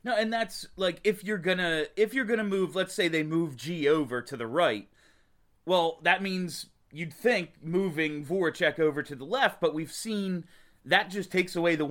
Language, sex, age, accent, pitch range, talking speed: English, male, 30-49, American, 140-195 Hz, 195 wpm